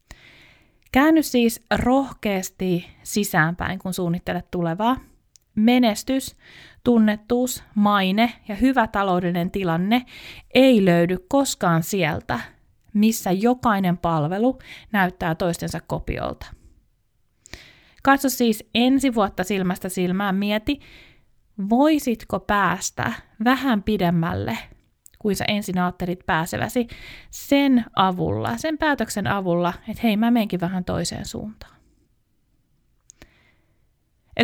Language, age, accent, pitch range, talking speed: Finnish, 30-49, native, 175-235 Hz, 90 wpm